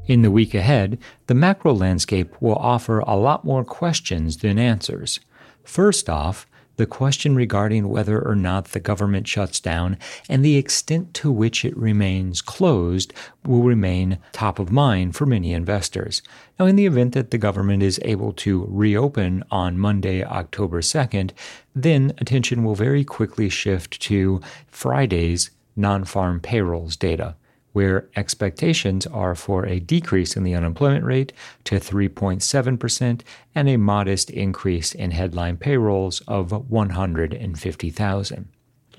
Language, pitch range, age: English, 95-125 Hz, 40-59